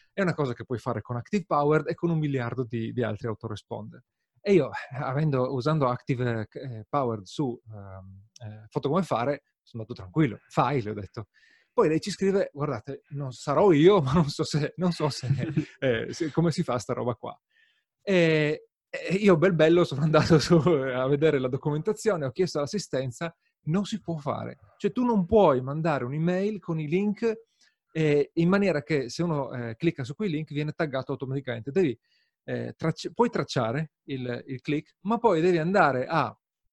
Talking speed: 180 wpm